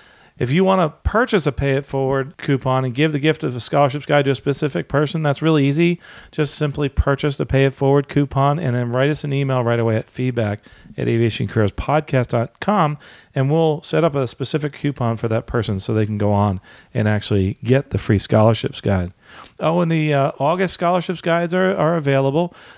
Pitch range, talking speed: 115-150 Hz, 190 wpm